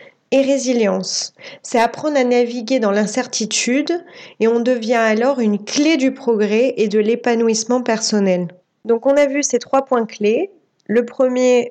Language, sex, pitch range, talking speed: French, female, 210-265 Hz, 155 wpm